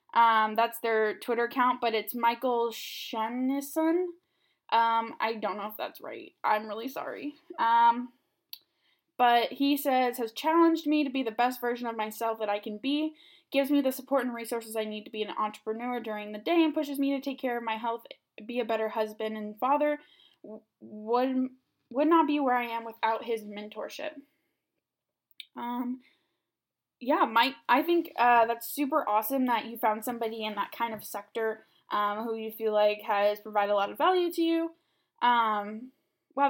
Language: English